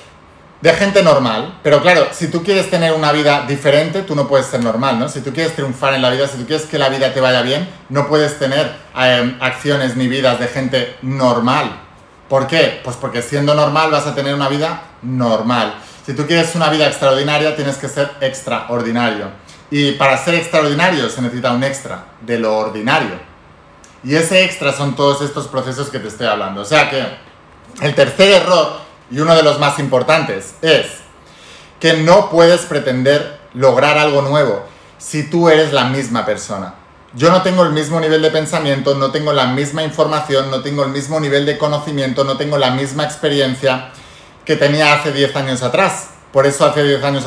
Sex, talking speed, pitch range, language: male, 190 wpm, 130-150 Hz, Spanish